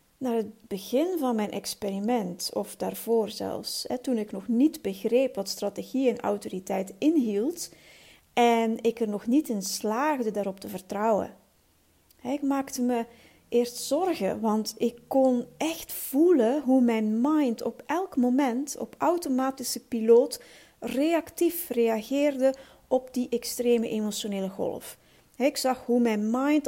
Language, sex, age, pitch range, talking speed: Dutch, female, 40-59, 220-270 Hz, 135 wpm